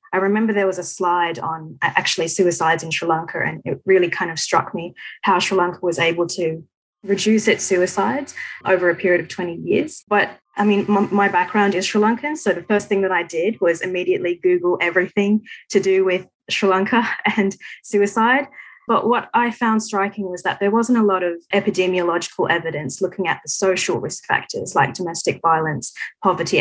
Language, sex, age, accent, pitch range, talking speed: English, female, 20-39, Australian, 170-200 Hz, 190 wpm